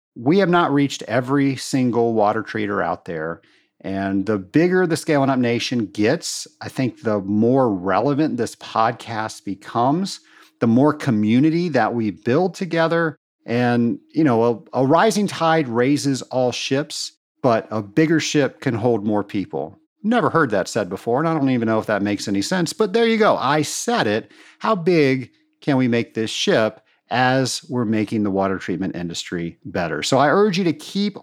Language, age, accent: English, 40-59, American